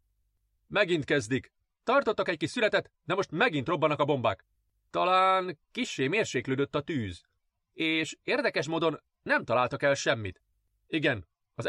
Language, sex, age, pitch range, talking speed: Hungarian, male, 30-49, 120-160 Hz, 135 wpm